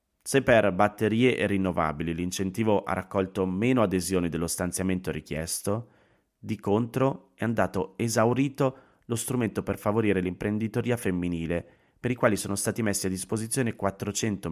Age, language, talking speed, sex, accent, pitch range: 30-49, Italian, 135 wpm, male, native, 95-115 Hz